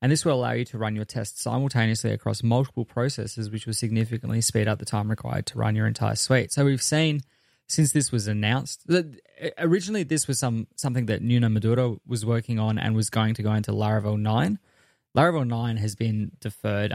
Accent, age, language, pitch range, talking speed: Australian, 20-39, English, 110-130 Hz, 205 wpm